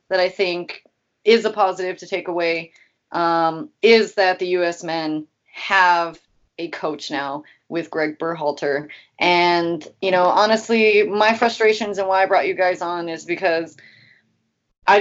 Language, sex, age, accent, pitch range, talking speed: English, female, 30-49, American, 175-215 Hz, 150 wpm